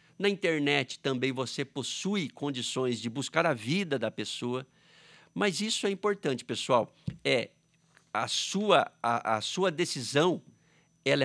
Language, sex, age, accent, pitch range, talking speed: Portuguese, male, 50-69, Brazilian, 145-200 Hz, 115 wpm